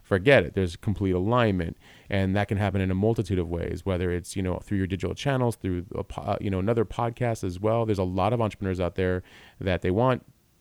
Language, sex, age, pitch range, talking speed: English, male, 30-49, 90-105 Hz, 225 wpm